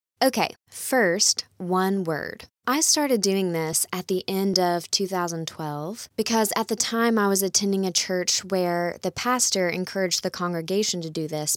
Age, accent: 20-39, American